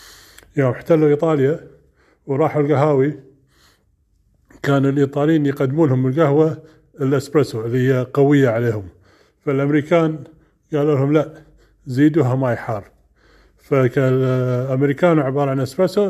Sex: male